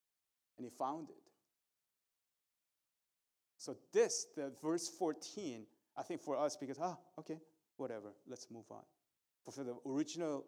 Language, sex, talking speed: English, male, 135 wpm